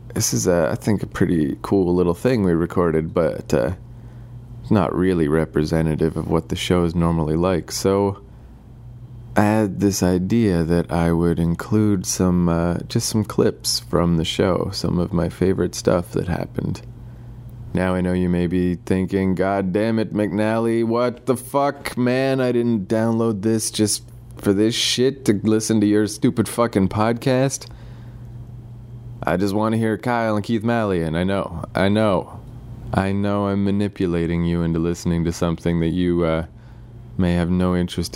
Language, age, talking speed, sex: English, 30-49, 170 wpm, male